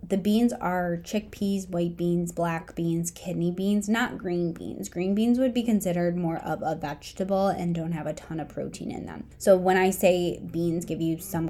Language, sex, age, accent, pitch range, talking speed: English, female, 20-39, American, 170-215 Hz, 205 wpm